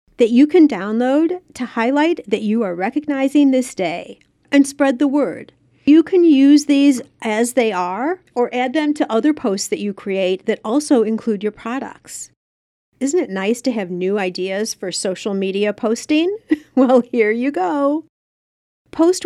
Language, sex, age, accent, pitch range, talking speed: English, female, 50-69, American, 200-285 Hz, 165 wpm